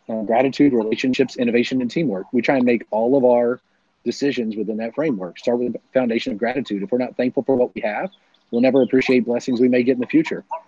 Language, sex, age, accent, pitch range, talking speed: English, male, 30-49, American, 120-140 Hz, 230 wpm